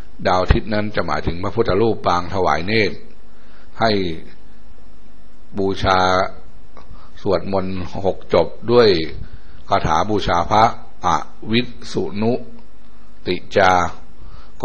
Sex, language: male, Thai